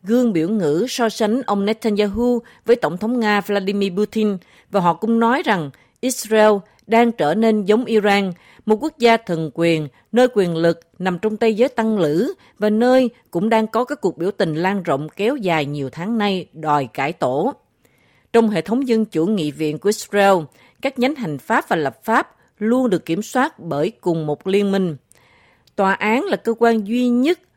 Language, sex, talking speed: Vietnamese, female, 195 wpm